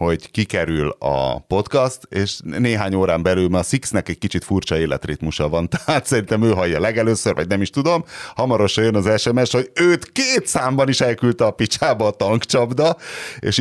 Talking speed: 175 wpm